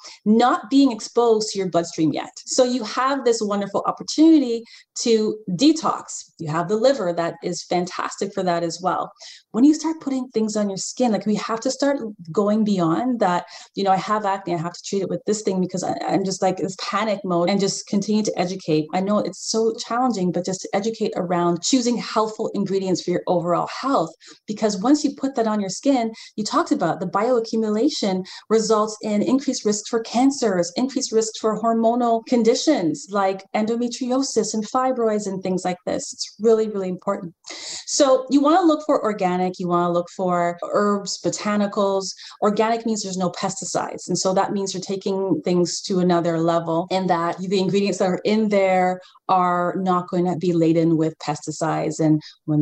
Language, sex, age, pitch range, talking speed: English, female, 20-39, 175-230 Hz, 190 wpm